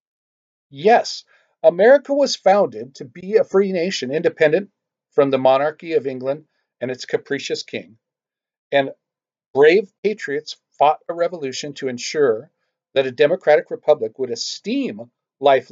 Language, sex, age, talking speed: English, male, 50-69, 130 wpm